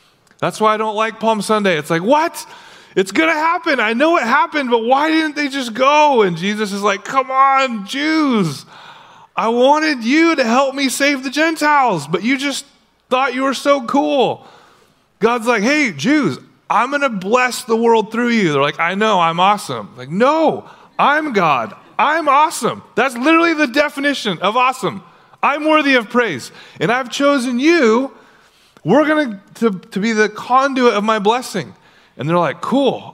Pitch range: 185-280 Hz